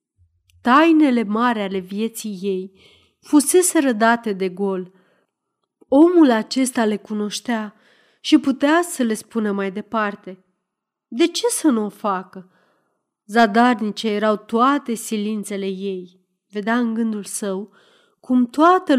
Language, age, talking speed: Romanian, 30-49, 115 wpm